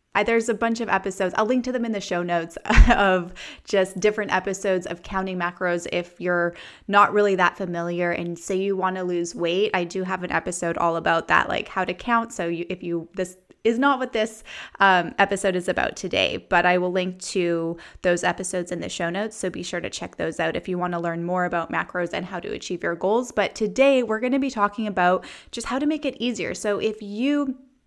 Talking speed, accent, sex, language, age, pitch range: 235 wpm, American, female, English, 20-39, 185-230 Hz